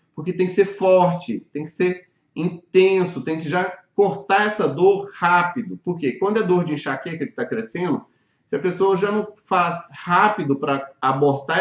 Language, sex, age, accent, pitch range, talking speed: Portuguese, male, 30-49, Brazilian, 145-185 Hz, 175 wpm